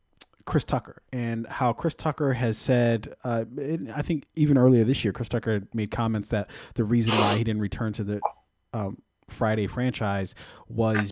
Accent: American